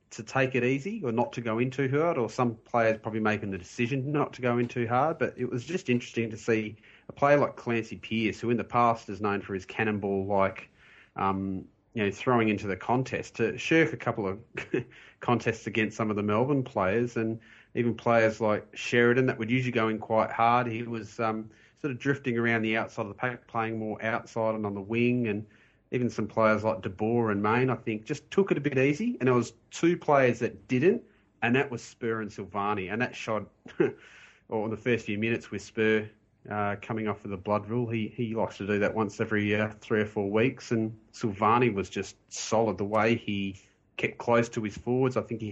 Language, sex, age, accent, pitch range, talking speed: English, male, 30-49, Australian, 105-120 Hz, 230 wpm